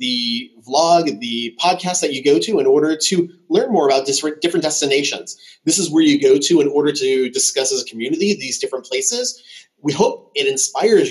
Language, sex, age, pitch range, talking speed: English, male, 30-49, 140-230 Hz, 195 wpm